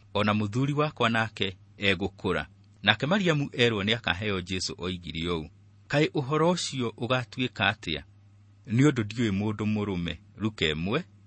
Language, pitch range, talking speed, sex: English, 90-115 Hz, 130 wpm, male